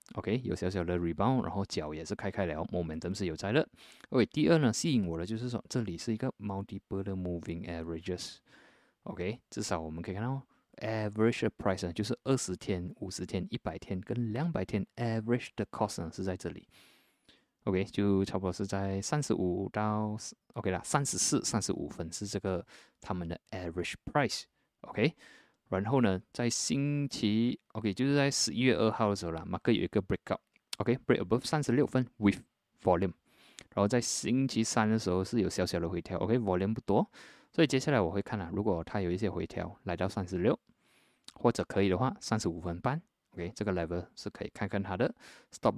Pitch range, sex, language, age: 90-120 Hz, male, Chinese, 20-39